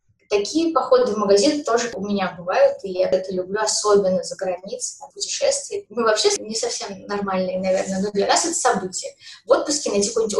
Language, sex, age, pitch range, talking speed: Russian, female, 20-39, 195-285 Hz, 185 wpm